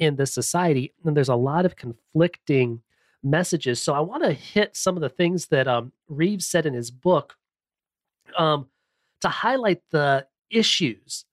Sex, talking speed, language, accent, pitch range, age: male, 165 wpm, English, American, 130-165 Hz, 30-49